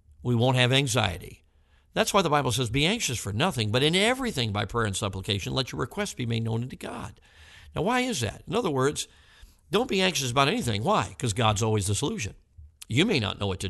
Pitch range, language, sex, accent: 105-140 Hz, English, male, American